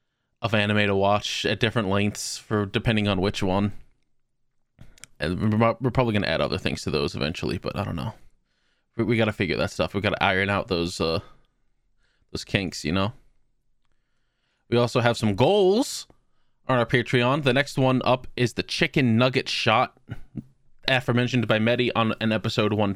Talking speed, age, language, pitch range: 170 wpm, 20-39, English, 110-135 Hz